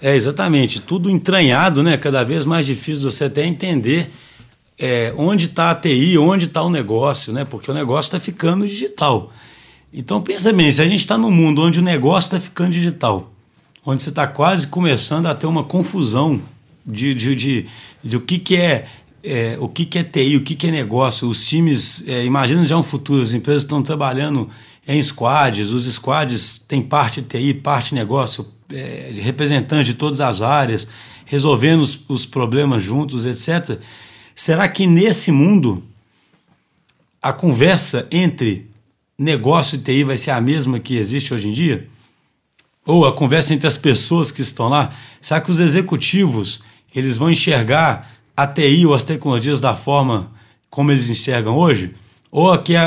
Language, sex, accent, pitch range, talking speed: Portuguese, male, Brazilian, 125-160 Hz, 155 wpm